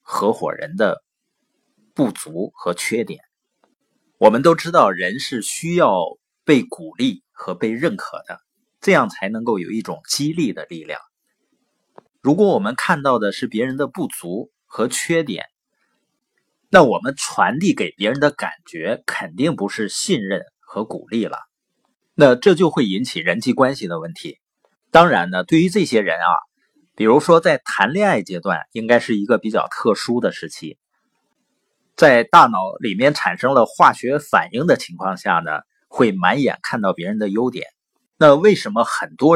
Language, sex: Chinese, male